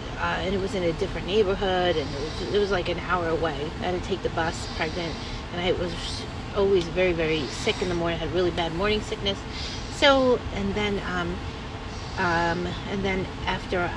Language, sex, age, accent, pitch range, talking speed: English, female, 30-49, American, 175-215 Hz, 200 wpm